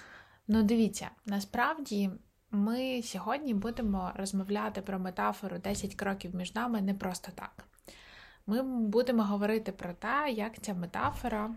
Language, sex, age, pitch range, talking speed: Ukrainian, female, 20-39, 185-220 Hz, 125 wpm